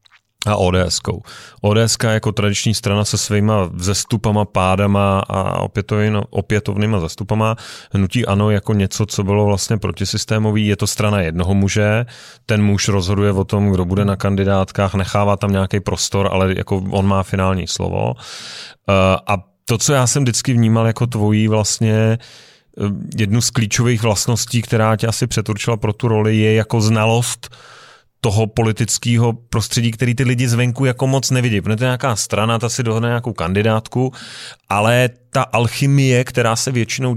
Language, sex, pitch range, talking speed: Czech, male, 105-120 Hz, 155 wpm